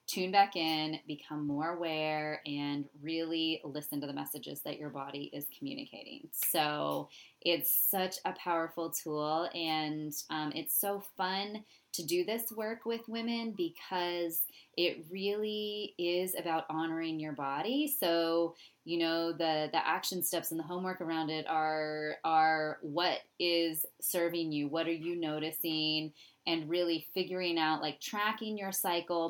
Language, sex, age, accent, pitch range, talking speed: English, female, 20-39, American, 155-185 Hz, 145 wpm